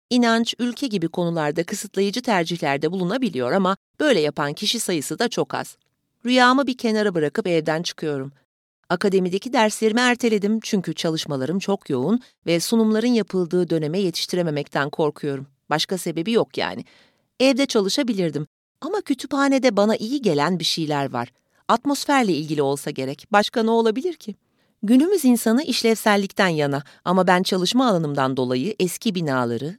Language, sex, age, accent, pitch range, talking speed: Turkish, female, 40-59, native, 155-235 Hz, 135 wpm